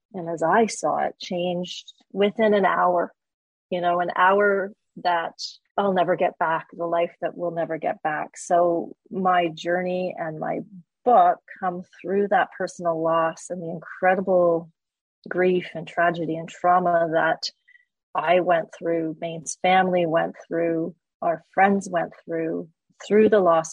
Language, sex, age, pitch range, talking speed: English, female, 30-49, 165-190 Hz, 150 wpm